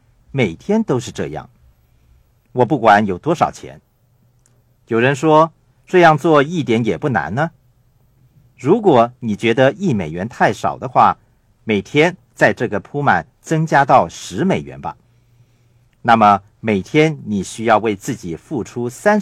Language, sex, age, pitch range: Chinese, male, 50-69, 115-130 Hz